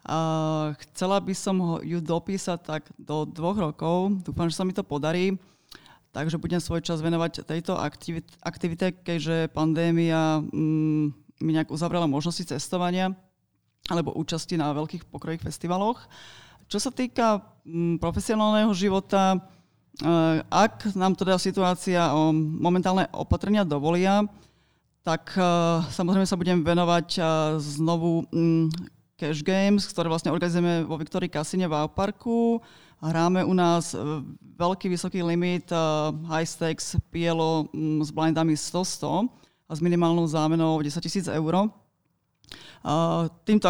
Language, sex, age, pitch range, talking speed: Slovak, female, 20-39, 160-185 Hz, 120 wpm